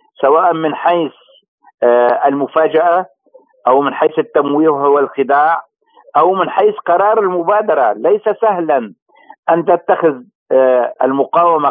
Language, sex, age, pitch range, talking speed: Arabic, male, 50-69, 155-200 Hz, 95 wpm